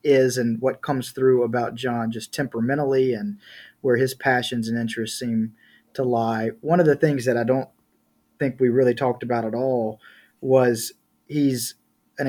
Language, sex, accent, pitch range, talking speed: English, male, American, 115-135 Hz, 170 wpm